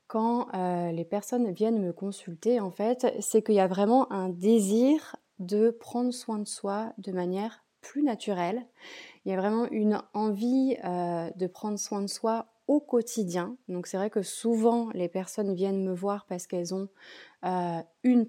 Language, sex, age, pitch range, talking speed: French, female, 20-39, 180-225 Hz, 175 wpm